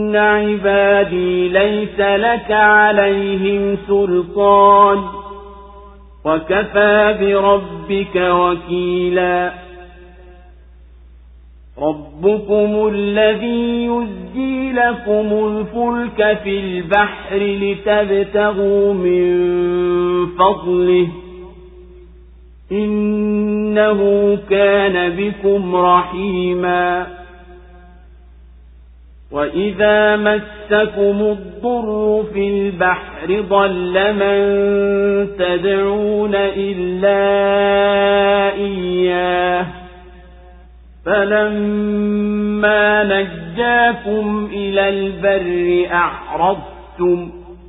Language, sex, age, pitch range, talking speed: Swahili, male, 50-69, 180-210 Hz, 45 wpm